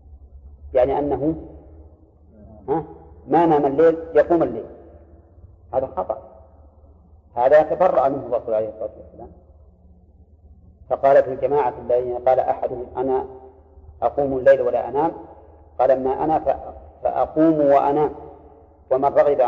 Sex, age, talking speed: male, 40-59, 105 wpm